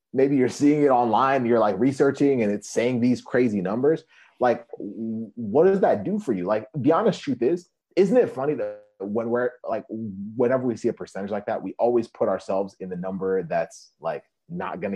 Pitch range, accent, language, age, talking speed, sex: 110-155 Hz, American, English, 30-49, 205 wpm, male